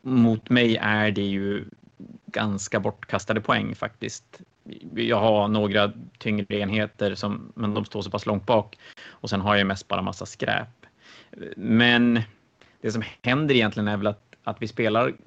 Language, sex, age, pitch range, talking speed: Swedish, male, 30-49, 105-120 Hz, 160 wpm